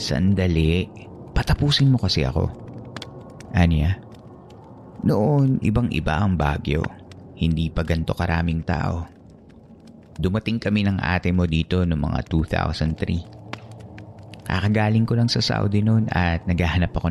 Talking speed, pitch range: 120 wpm, 85-110 Hz